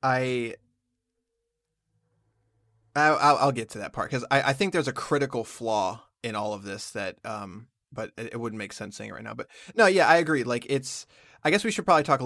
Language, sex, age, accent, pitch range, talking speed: English, male, 20-39, American, 120-155 Hz, 220 wpm